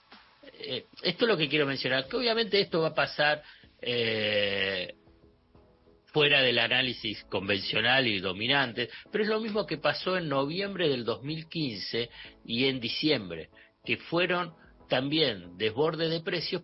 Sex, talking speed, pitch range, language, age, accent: male, 135 wpm, 115-165 Hz, Spanish, 50-69, Argentinian